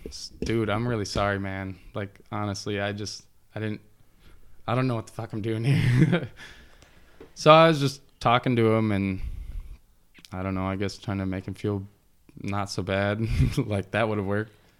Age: 20-39